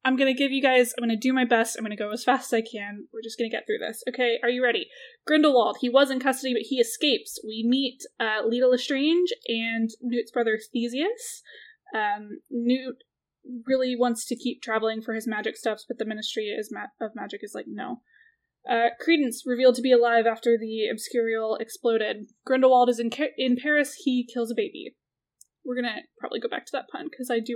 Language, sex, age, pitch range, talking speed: English, female, 10-29, 225-265 Hz, 220 wpm